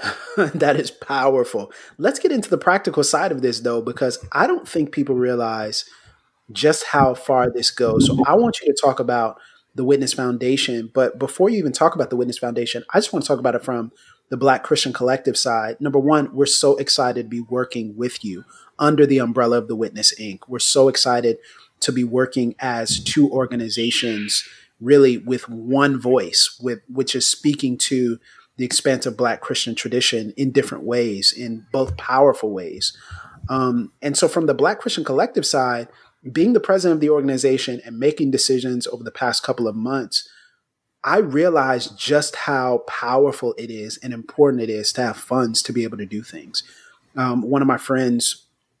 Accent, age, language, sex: American, 30-49, English, male